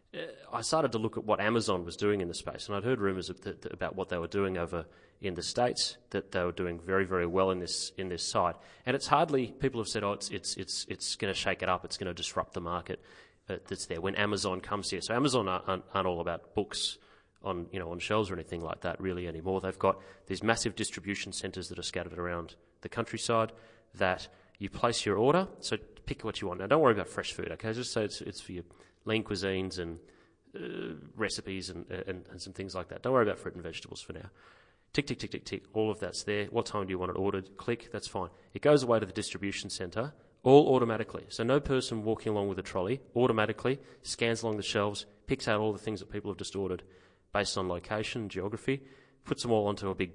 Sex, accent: male, Australian